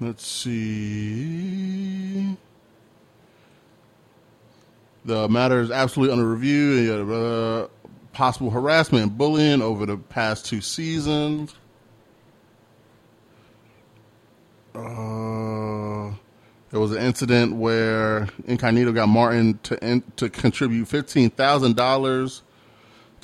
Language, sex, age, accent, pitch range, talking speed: English, male, 30-49, American, 110-130 Hz, 85 wpm